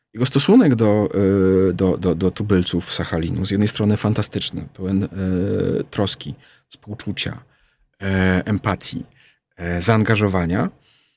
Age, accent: 50-69, native